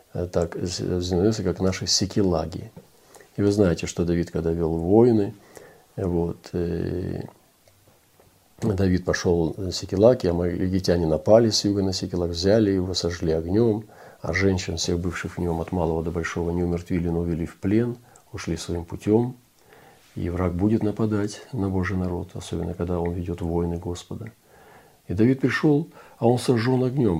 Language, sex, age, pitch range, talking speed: Russian, male, 40-59, 85-105 Hz, 155 wpm